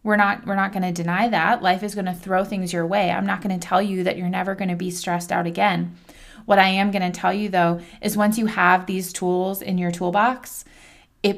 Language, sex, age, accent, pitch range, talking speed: English, female, 20-39, American, 180-215 Hz, 260 wpm